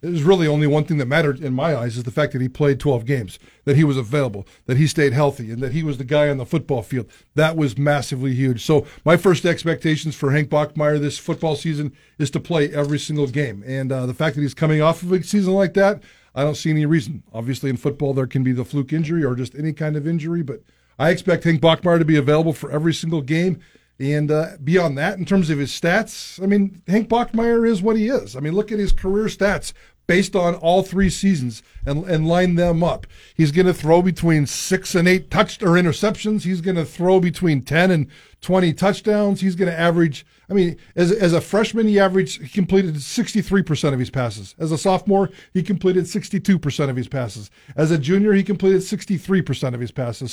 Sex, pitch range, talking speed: male, 145-185 Hz, 230 wpm